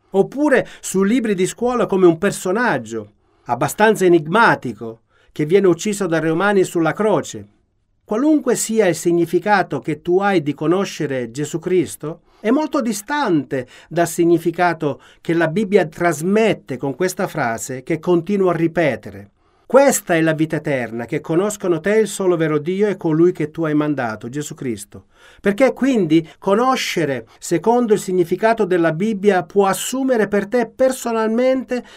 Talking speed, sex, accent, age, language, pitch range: 145 wpm, male, native, 40-59, Italian, 145-205 Hz